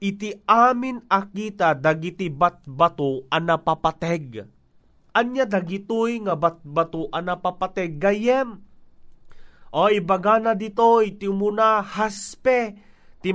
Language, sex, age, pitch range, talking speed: Filipino, male, 30-49, 165-215 Hz, 95 wpm